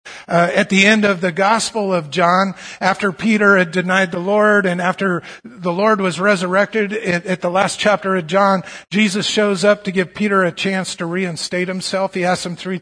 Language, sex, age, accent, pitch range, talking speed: English, male, 50-69, American, 155-185 Hz, 200 wpm